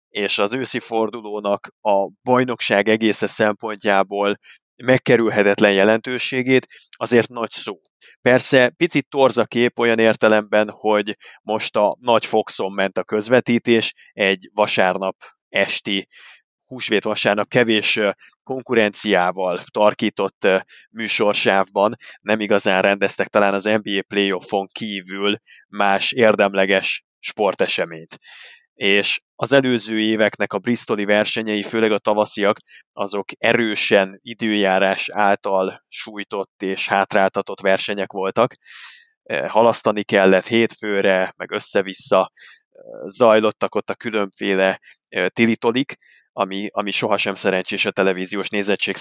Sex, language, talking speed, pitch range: male, Hungarian, 100 wpm, 100-115 Hz